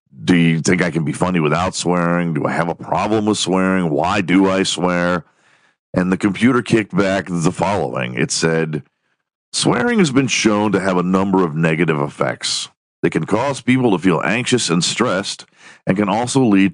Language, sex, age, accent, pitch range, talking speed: English, male, 50-69, American, 85-125 Hz, 190 wpm